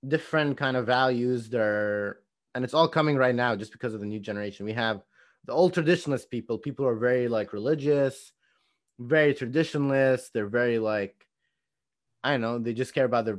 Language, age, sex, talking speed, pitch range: English, 30-49, male, 185 wpm, 105-135 Hz